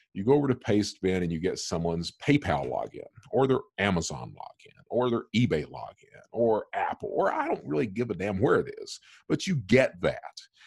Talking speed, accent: 195 wpm, American